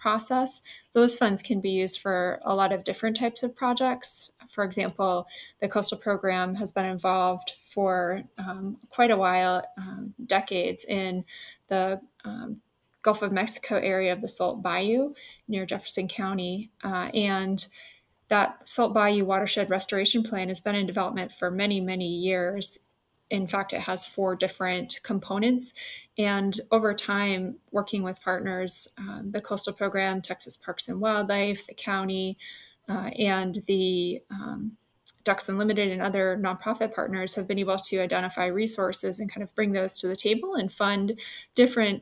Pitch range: 185-215 Hz